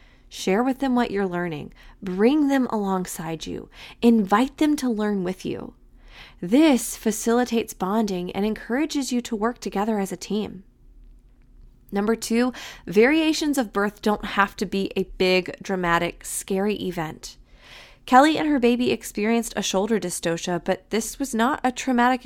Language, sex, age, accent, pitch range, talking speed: English, female, 20-39, American, 190-245 Hz, 150 wpm